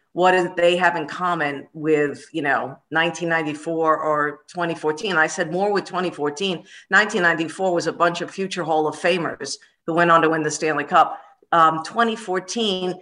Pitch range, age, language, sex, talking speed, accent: 155-195 Hz, 50-69, English, female, 165 wpm, American